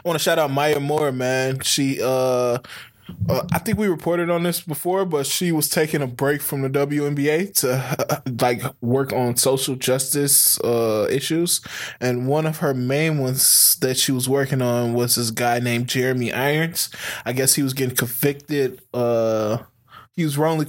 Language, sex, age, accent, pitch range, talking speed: English, male, 20-39, American, 120-140 Hz, 180 wpm